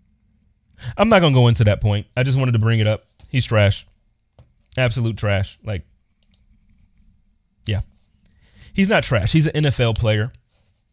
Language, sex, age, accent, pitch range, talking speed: English, male, 30-49, American, 100-120 Hz, 155 wpm